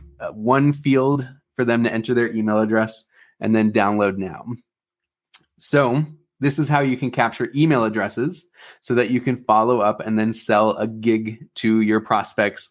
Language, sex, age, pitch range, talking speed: English, male, 20-39, 115-145 Hz, 175 wpm